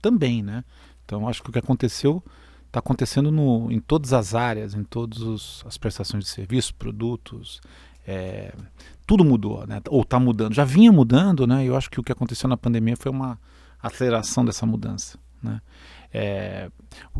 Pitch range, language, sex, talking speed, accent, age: 105-130 Hz, Portuguese, male, 180 wpm, Brazilian, 40-59